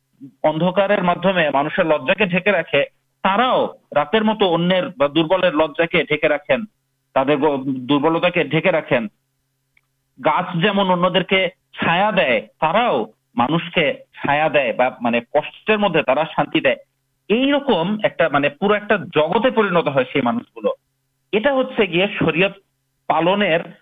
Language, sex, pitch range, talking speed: Urdu, male, 140-200 Hz, 60 wpm